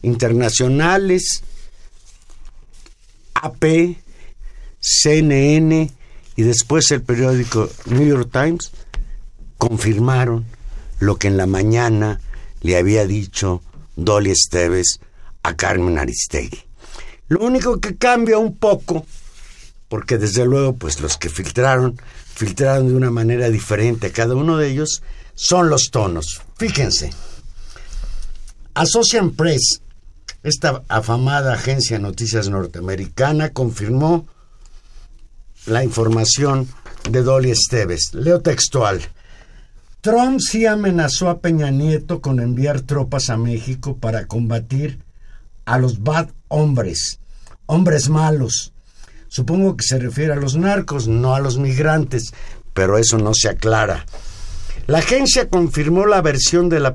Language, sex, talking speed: Spanish, male, 115 wpm